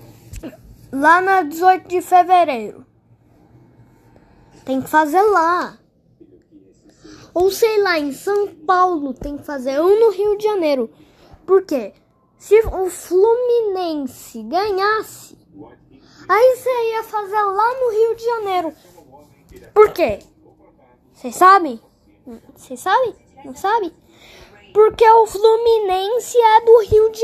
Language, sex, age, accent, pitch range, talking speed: Portuguese, female, 10-29, Brazilian, 345-430 Hz, 115 wpm